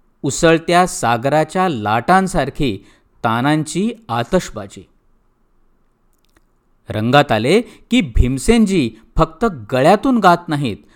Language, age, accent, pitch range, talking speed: Marathi, 50-69, native, 115-175 Hz, 70 wpm